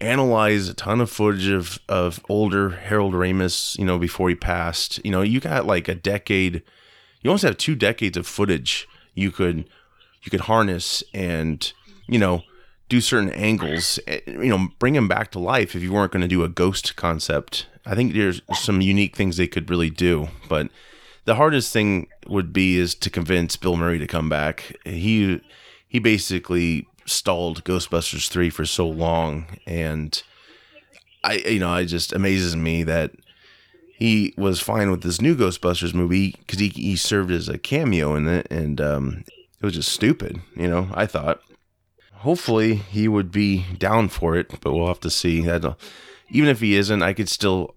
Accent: American